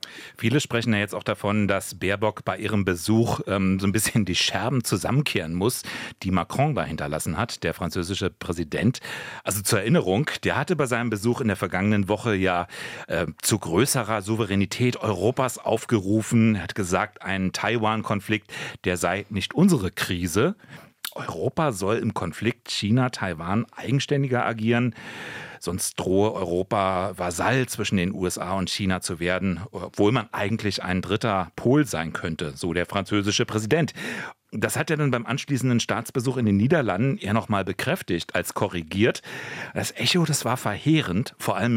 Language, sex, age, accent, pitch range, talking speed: German, male, 40-59, German, 95-115 Hz, 155 wpm